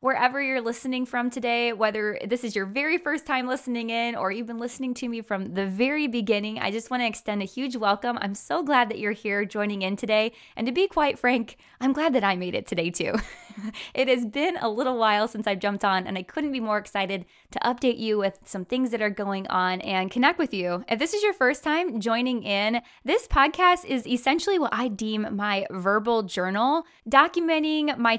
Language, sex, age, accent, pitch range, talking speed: English, female, 20-39, American, 205-270 Hz, 220 wpm